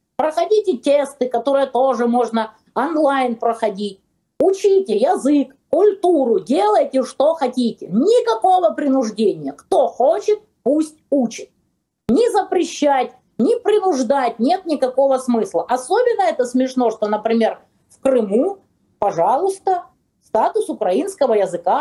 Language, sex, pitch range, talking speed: Russian, female, 230-360 Hz, 100 wpm